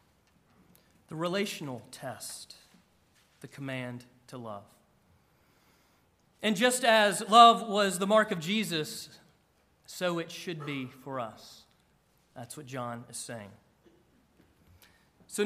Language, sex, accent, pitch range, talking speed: English, male, American, 160-215 Hz, 110 wpm